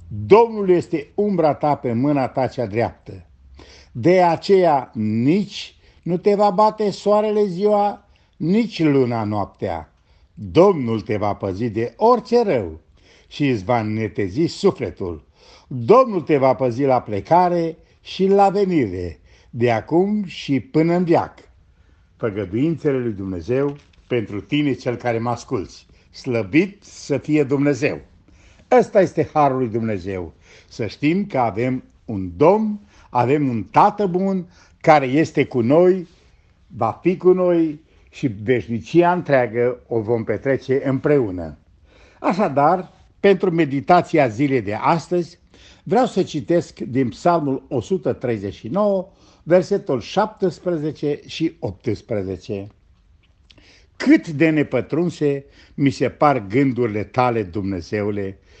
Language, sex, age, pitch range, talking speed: Romanian, male, 60-79, 105-170 Hz, 120 wpm